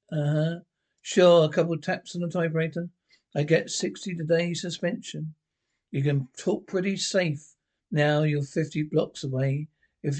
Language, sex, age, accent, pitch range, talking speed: English, male, 60-79, British, 150-180 Hz, 145 wpm